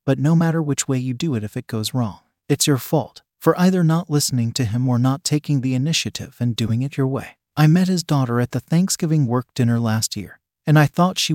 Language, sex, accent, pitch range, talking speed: English, male, American, 120-155 Hz, 245 wpm